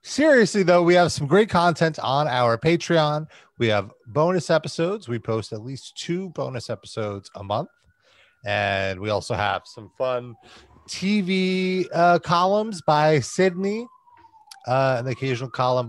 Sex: male